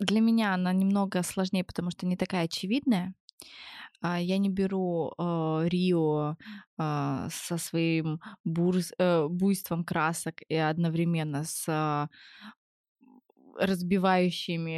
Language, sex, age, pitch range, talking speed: Russian, female, 20-39, 155-185 Hz, 105 wpm